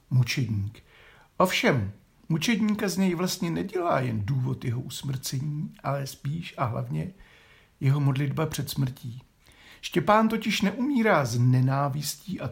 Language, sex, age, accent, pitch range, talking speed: Czech, male, 60-79, native, 120-165 Hz, 115 wpm